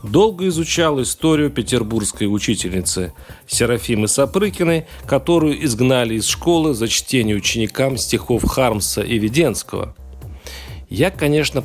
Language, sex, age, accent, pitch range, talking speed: Russian, male, 40-59, native, 110-145 Hz, 105 wpm